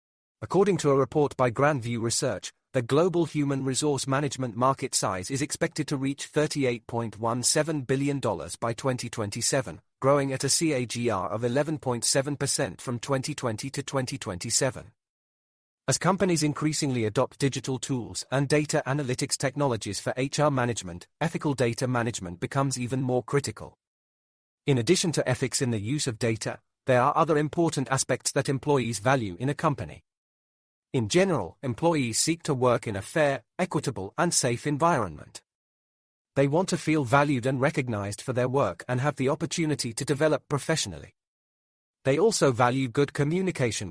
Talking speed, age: 145 wpm, 40-59